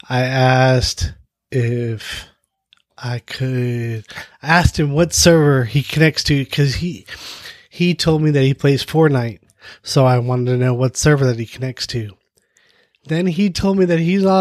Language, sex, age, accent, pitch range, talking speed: English, male, 20-39, American, 120-155 Hz, 165 wpm